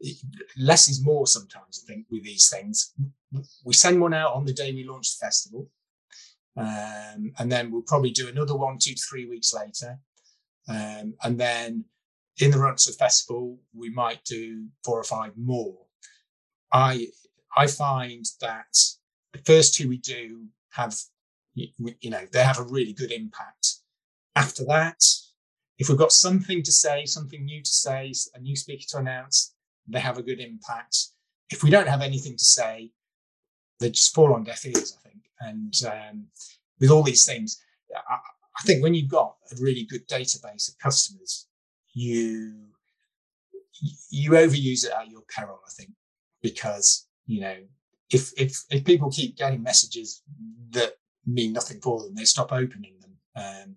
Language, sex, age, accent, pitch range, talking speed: English, male, 30-49, British, 115-150 Hz, 165 wpm